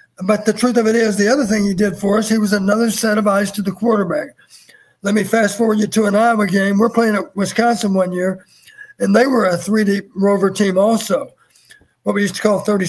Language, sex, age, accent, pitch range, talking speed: English, male, 60-79, American, 200-230 Hz, 240 wpm